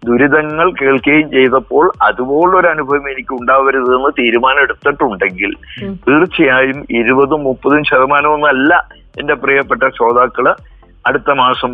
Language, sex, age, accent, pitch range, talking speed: Malayalam, male, 50-69, native, 120-155 Hz, 90 wpm